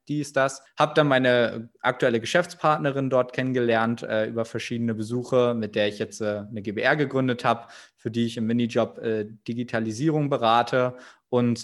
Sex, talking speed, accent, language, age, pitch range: male, 165 wpm, German, German, 20-39, 115-140 Hz